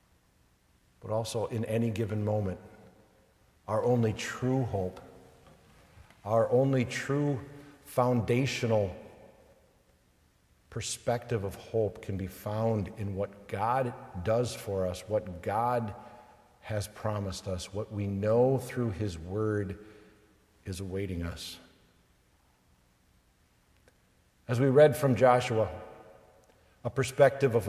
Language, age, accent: English, 50-69, American